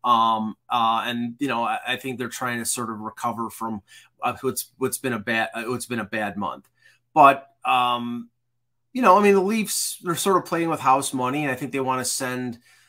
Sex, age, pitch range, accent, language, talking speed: male, 30-49, 115-150 Hz, American, English, 220 wpm